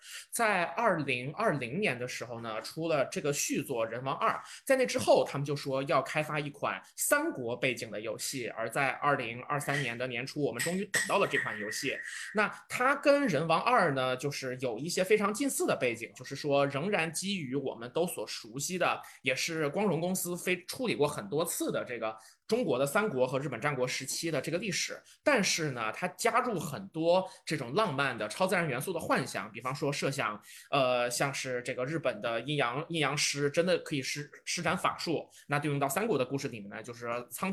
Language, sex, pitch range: Chinese, male, 130-180 Hz